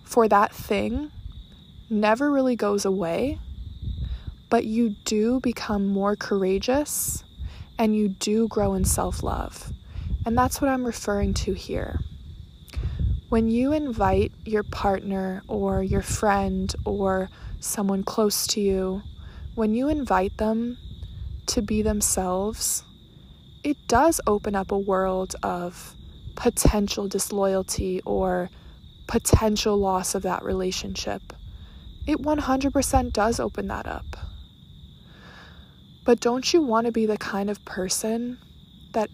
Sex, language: female, English